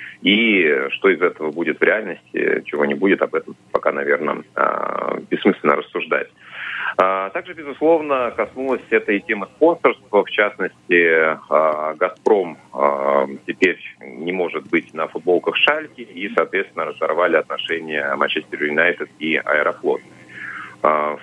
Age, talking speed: 30-49, 120 wpm